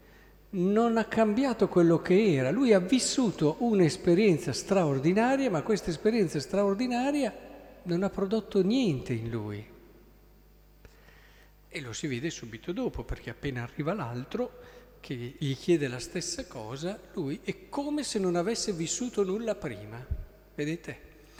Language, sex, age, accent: Italian, male, 50-69, native